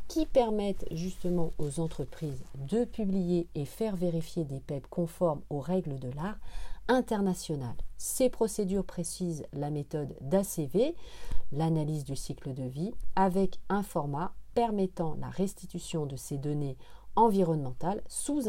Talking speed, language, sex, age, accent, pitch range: 130 wpm, French, female, 40-59, French, 160-215 Hz